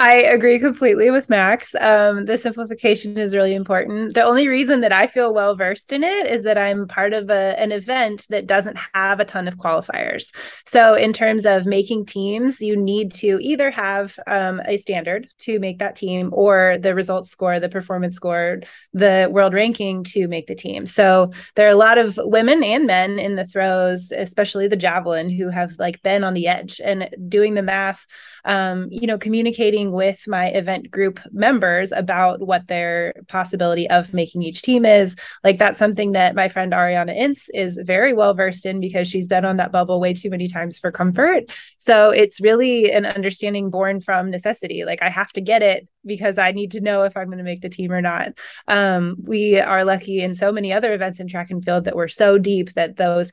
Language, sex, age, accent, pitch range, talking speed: English, female, 20-39, American, 185-215 Hz, 205 wpm